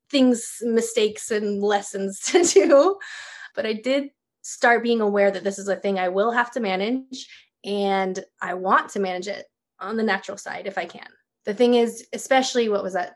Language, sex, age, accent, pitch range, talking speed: English, female, 20-39, American, 195-245 Hz, 190 wpm